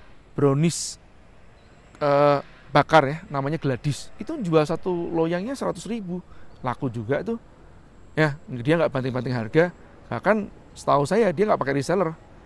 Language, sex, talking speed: Indonesian, male, 130 wpm